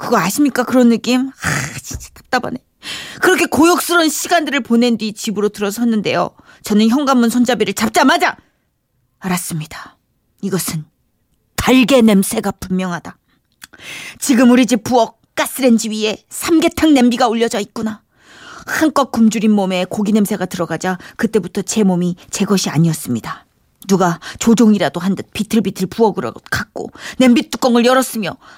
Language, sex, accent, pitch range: Korean, female, native, 185-260 Hz